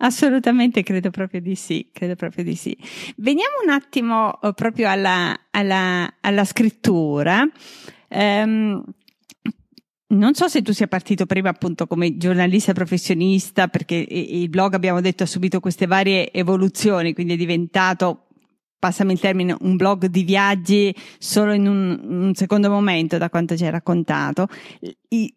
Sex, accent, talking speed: female, native, 140 wpm